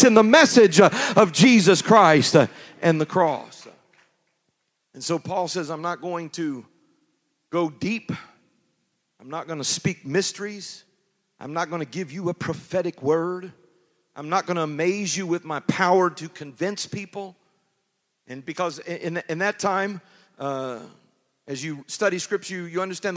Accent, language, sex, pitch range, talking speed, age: American, English, male, 160-205 Hz, 150 wpm, 40-59